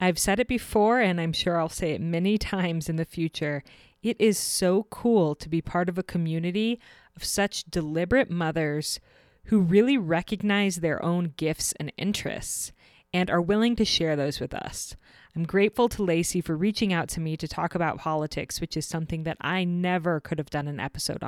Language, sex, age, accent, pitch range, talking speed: English, female, 20-39, American, 155-200 Hz, 195 wpm